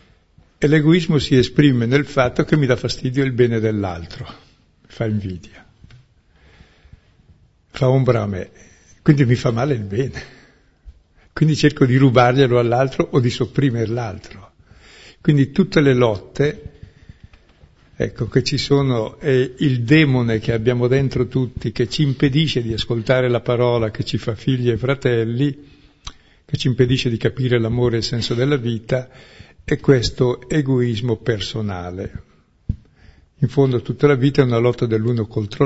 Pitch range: 110-135 Hz